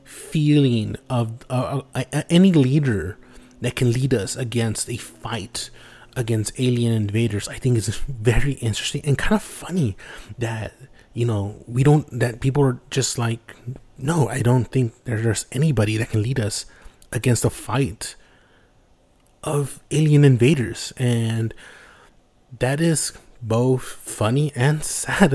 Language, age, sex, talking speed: English, 30-49, male, 135 wpm